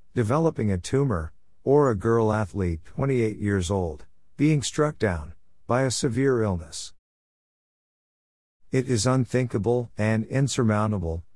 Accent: American